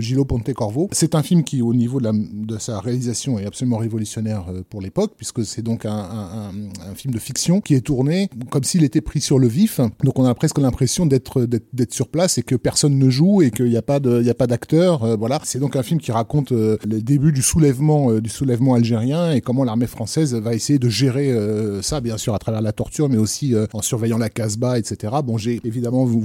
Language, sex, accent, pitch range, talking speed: French, male, French, 115-150 Hz, 250 wpm